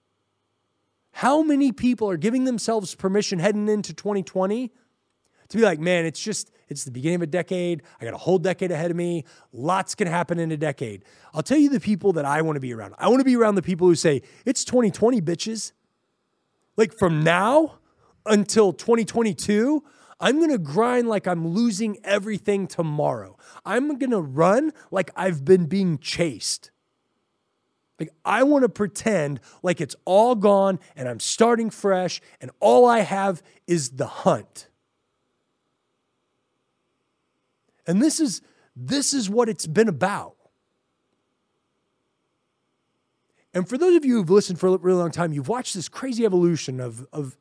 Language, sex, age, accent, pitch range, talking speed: English, male, 20-39, American, 160-220 Hz, 165 wpm